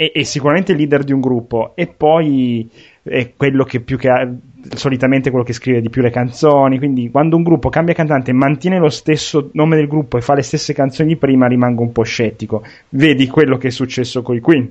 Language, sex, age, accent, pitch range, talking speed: Italian, male, 30-49, native, 120-155 Hz, 225 wpm